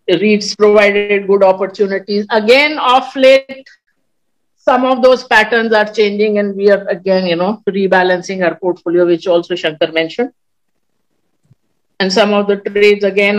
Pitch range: 200-270 Hz